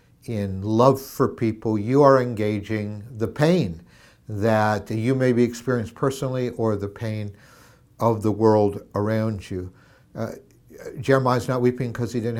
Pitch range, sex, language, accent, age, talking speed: 105-130 Hz, male, English, American, 60-79, 145 wpm